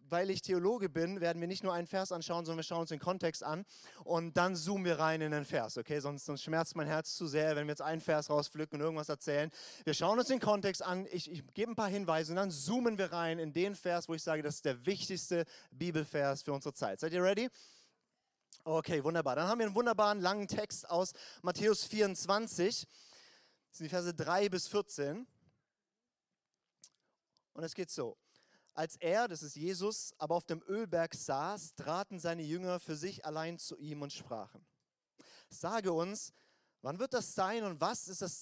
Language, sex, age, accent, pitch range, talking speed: German, male, 30-49, German, 155-190 Hz, 205 wpm